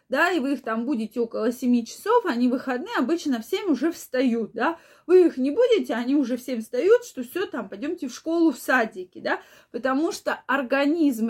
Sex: female